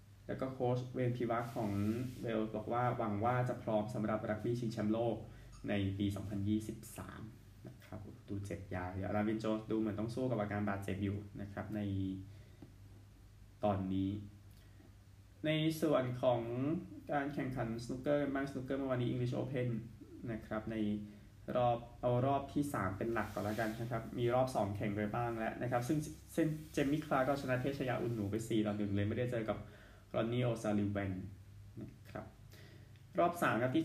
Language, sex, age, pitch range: Thai, male, 20-39, 105-125 Hz